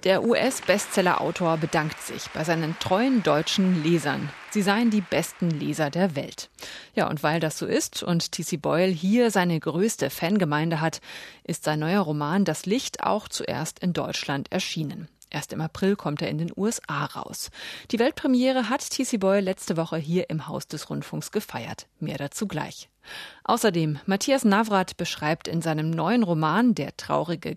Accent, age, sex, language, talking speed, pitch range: German, 30-49, female, German, 170 wpm, 160-210 Hz